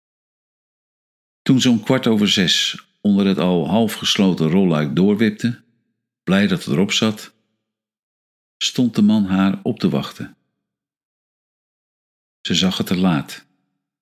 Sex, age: male, 50-69